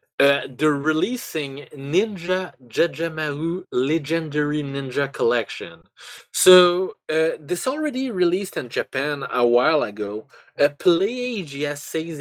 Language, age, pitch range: English, 20-39, 130-170 Hz